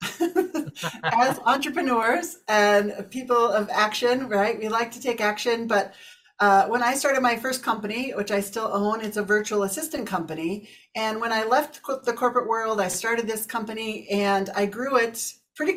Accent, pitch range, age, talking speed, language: American, 195-240 Hz, 40-59, 170 wpm, English